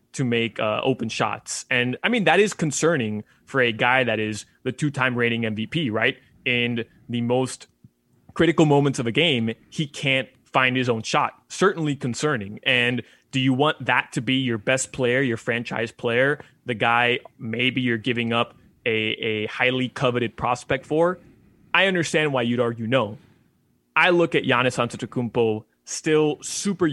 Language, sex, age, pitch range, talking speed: English, male, 20-39, 115-135 Hz, 165 wpm